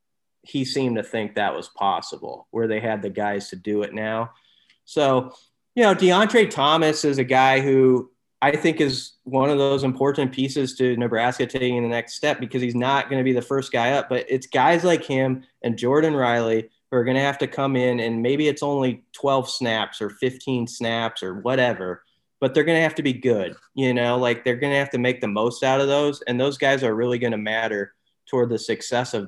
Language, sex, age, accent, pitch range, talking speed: English, male, 30-49, American, 115-135 Hz, 225 wpm